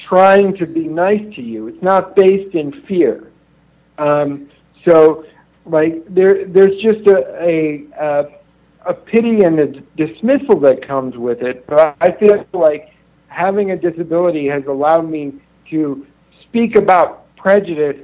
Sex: male